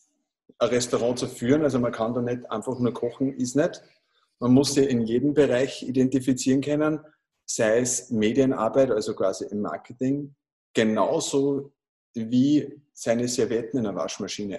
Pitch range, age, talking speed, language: 115-135 Hz, 50-69, 150 wpm, German